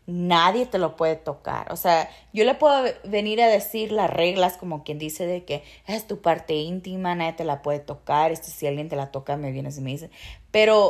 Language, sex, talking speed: English, female, 220 wpm